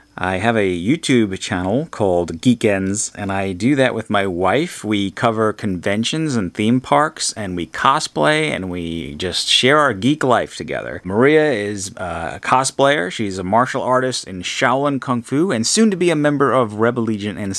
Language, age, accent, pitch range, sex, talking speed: English, 30-49, American, 95-120 Hz, male, 185 wpm